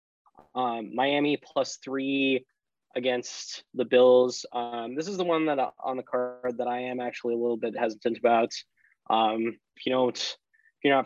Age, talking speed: 20-39, 175 wpm